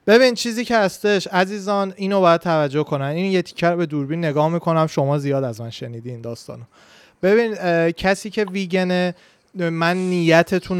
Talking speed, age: 155 wpm, 30-49